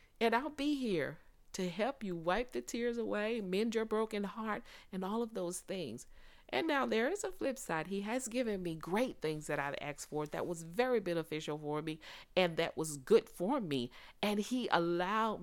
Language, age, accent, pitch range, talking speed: English, 50-69, American, 170-255 Hz, 200 wpm